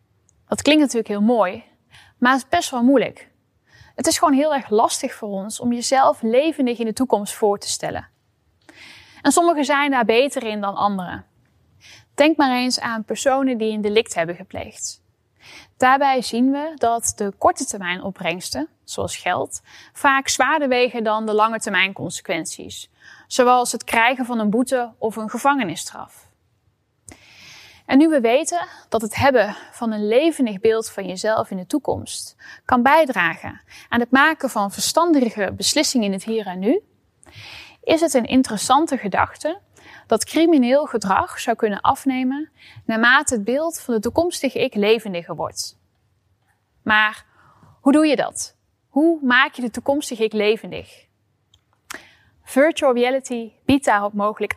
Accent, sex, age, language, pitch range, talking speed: Dutch, female, 10-29, Dutch, 205-275 Hz, 155 wpm